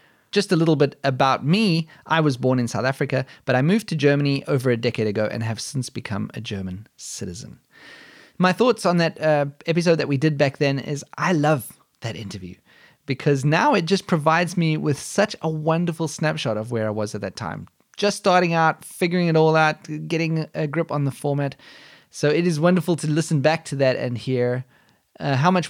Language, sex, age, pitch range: English, male, 20-39, 130-175 Hz